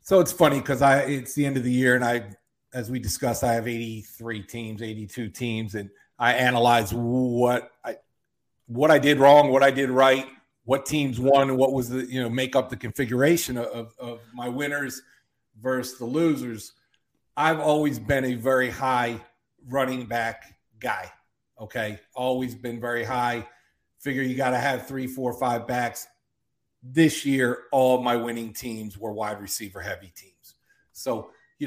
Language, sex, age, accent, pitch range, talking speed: English, male, 40-59, American, 120-135 Hz, 170 wpm